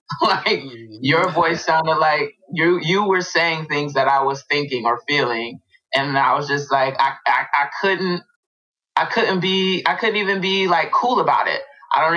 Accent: American